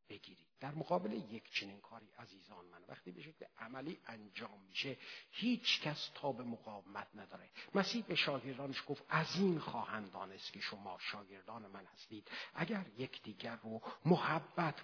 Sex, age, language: male, 50-69, Persian